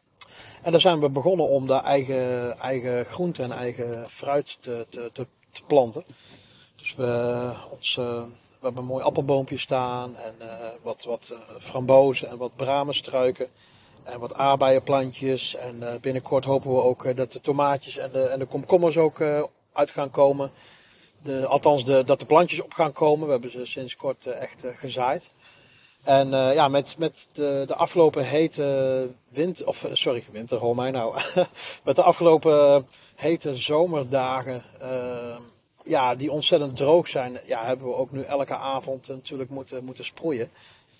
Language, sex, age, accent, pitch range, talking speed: Dutch, male, 40-59, Dutch, 125-145 Hz, 155 wpm